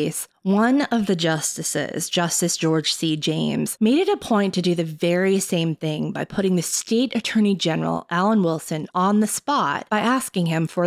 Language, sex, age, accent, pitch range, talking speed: English, female, 20-39, American, 165-210 Hz, 180 wpm